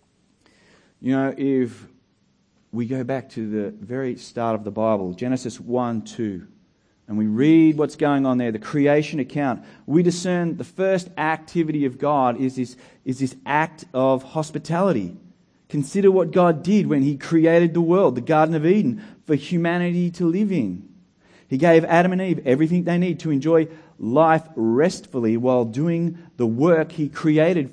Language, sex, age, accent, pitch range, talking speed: English, male, 30-49, Australian, 125-165 Hz, 160 wpm